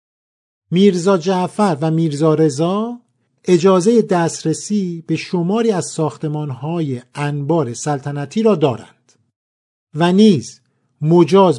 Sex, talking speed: male, 95 wpm